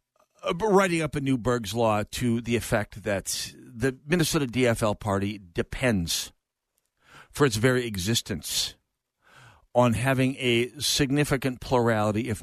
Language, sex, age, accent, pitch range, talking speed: English, male, 50-69, American, 115-150 Hz, 120 wpm